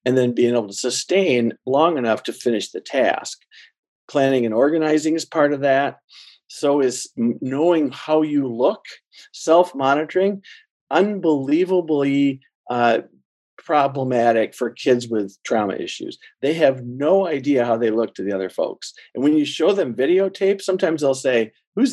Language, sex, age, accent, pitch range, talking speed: English, male, 50-69, American, 125-170 Hz, 150 wpm